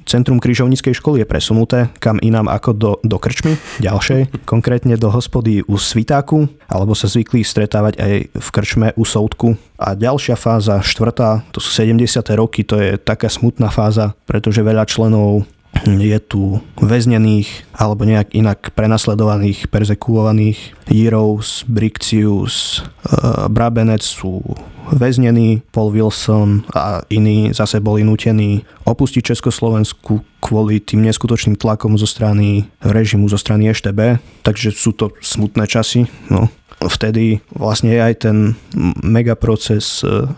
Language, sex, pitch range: Slovak, male, 105-115 Hz